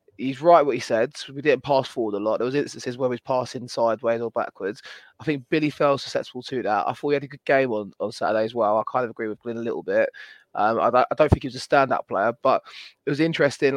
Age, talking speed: 20-39, 275 wpm